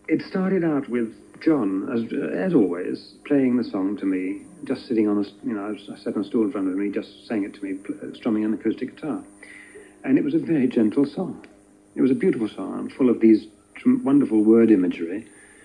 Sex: male